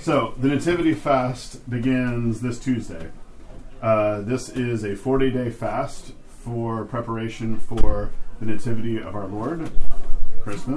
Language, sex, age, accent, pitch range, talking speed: English, male, 40-59, American, 100-120 Hz, 125 wpm